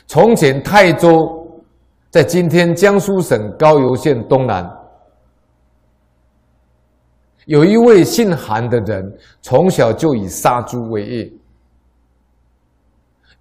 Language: Chinese